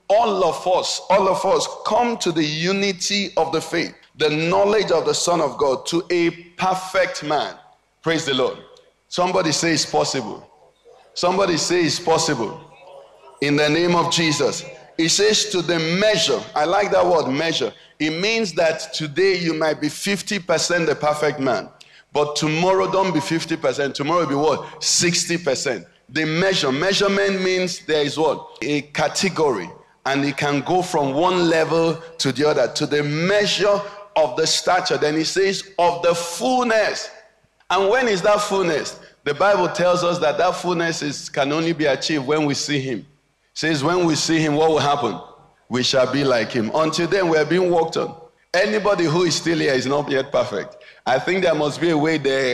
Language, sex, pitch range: English, male, 150-185 Hz